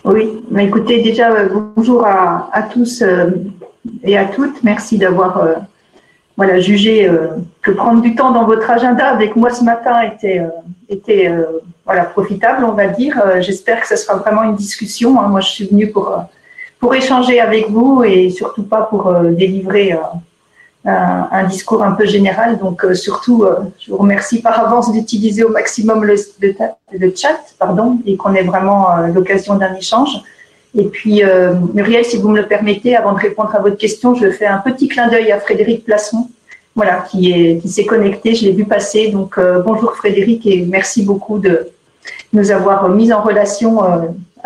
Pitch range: 190-225 Hz